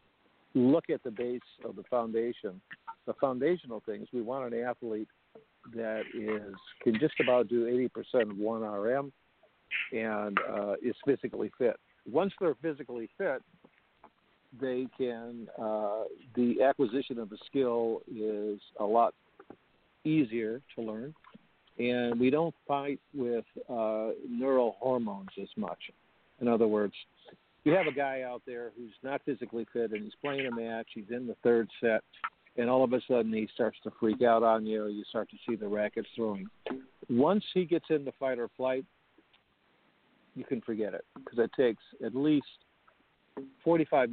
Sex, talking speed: male, 160 wpm